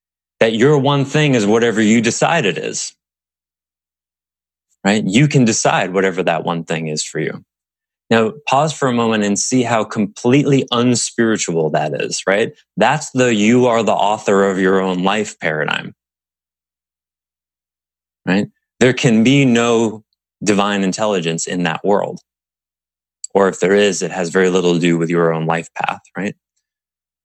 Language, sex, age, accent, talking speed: English, male, 20-39, American, 155 wpm